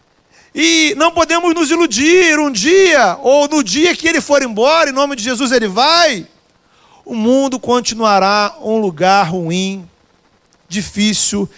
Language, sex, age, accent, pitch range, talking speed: Portuguese, male, 40-59, Brazilian, 205-295 Hz, 140 wpm